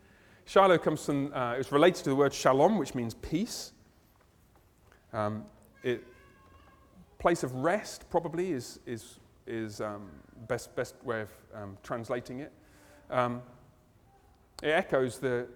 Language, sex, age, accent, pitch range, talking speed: English, male, 40-59, British, 120-160 Hz, 135 wpm